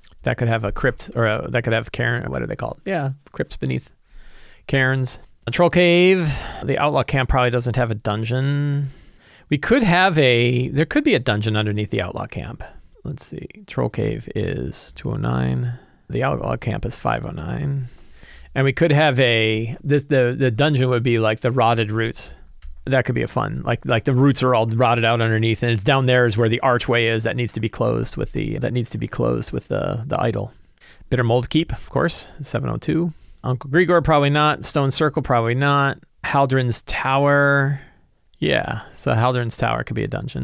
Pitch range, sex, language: 110-140 Hz, male, English